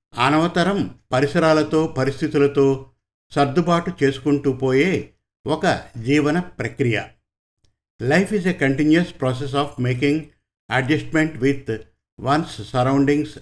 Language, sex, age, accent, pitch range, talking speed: Telugu, male, 50-69, native, 130-155 Hz, 90 wpm